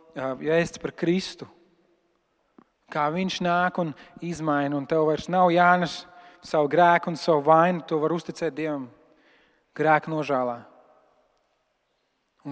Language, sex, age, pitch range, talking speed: English, male, 30-49, 150-180 Hz, 125 wpm